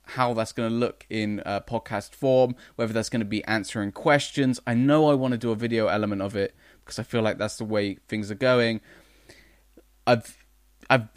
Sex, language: male, English